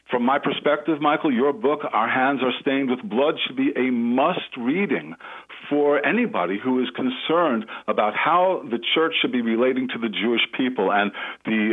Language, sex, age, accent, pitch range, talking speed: English, male, 50-69, American, 115-165 Hz, 180 wpm